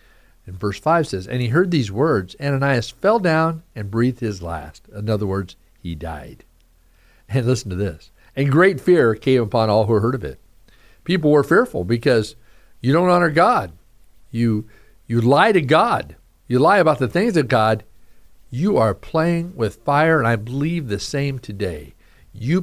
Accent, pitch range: American, 105-150 Hz